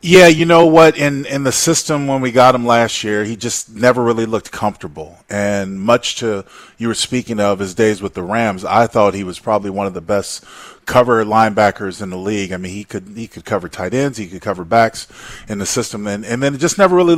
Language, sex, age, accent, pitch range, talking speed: English, male, 30-49, American, 105-135 Hz, 240 wpm